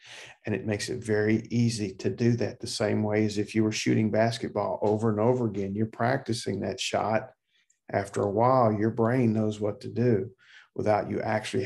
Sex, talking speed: male, 195 wpm